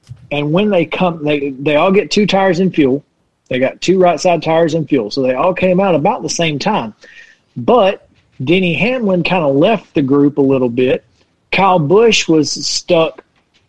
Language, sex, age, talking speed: English, male, 40-59, 195 wpm